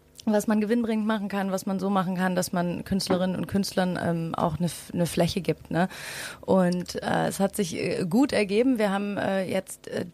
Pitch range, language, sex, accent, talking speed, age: 175-200 Hz, German, female, German, 215 wpm, 30-49